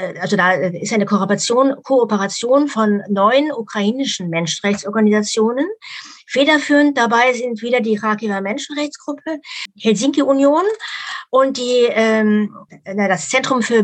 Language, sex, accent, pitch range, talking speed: German, female, German, 205-250 Hz, 105 wpm